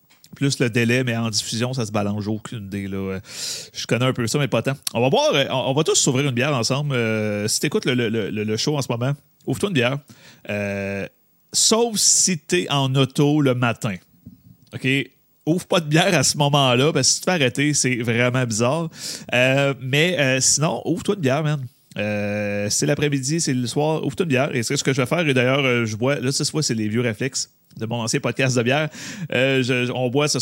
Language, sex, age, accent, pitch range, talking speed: French, male, 30-49, Canadian, 115-145 Hz, 235 wpm